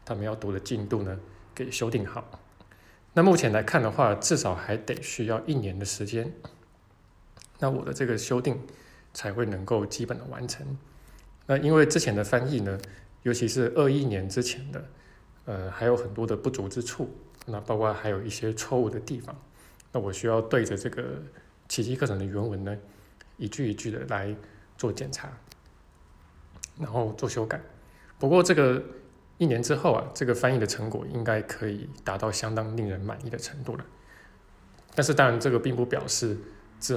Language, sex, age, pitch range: Chinese, male, 20-39, 105-125 Hz